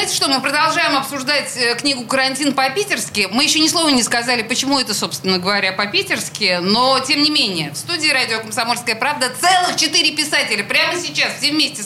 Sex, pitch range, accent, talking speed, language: female, 205-290 Hz, native, 170 wpm, Russian